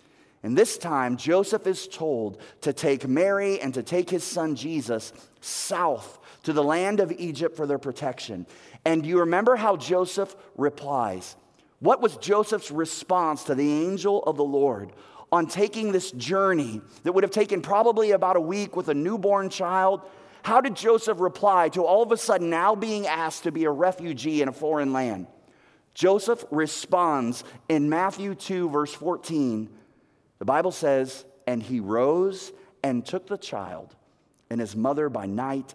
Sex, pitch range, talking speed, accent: male, 130-195 Hz, 165 wpm, American